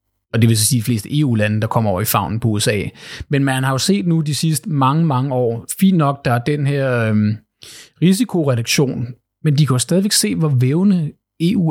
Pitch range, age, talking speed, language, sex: 120-155 Hz, 30-49, 225 wpm, Danish, male